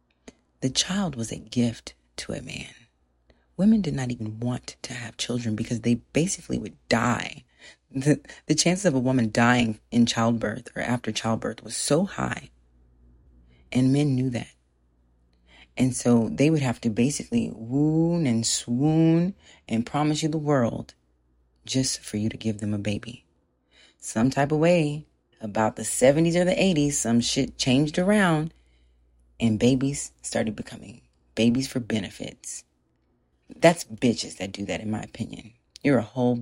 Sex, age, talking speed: female, 30-49, 155 wpm